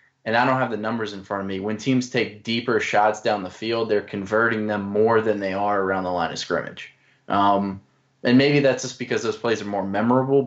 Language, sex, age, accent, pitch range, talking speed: English, male, 20-39, American, 100-115 Hz, 235 wpm